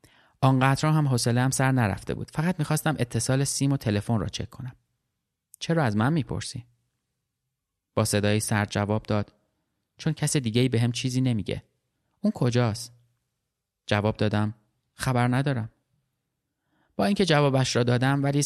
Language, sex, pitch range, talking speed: Persian, male, 105-135 Hz, 145 wpm